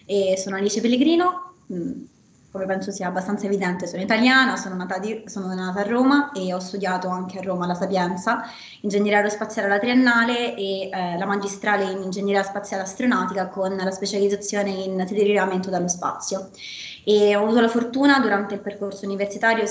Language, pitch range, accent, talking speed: Italian, 190-215 Hz, native, 165 wpm